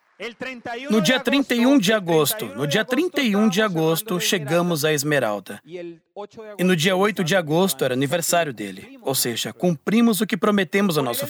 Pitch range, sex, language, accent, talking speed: 160-235 Hz, male, English, Brazilian, 160 wpm